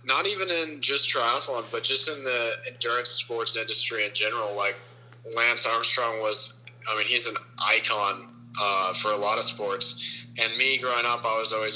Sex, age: male, 20-39